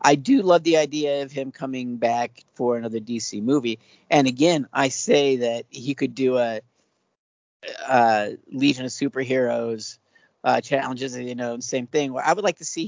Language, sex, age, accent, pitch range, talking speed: English, male, 50-69, American, 120-150 Hz, 170 wpm